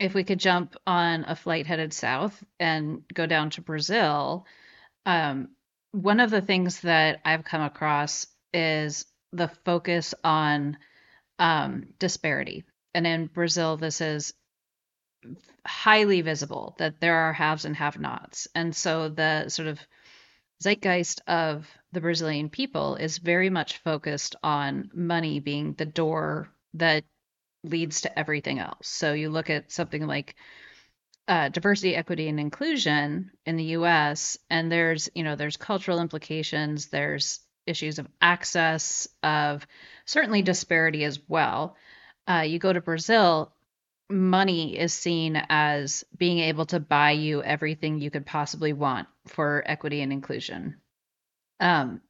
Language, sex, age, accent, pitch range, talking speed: English, female, 30-49, American, 150-175 Hz, 140 wpm